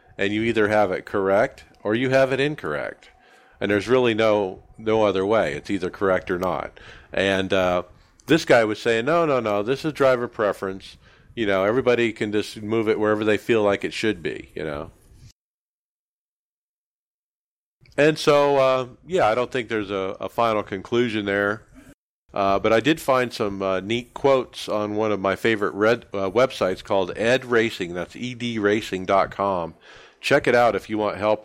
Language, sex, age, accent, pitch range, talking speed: English, male, 50-69, American, 100-125 Hz, 180 wpm